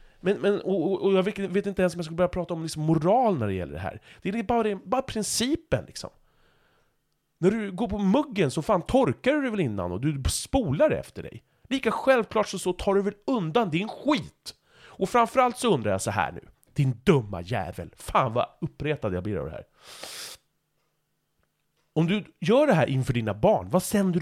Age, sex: 30-49, male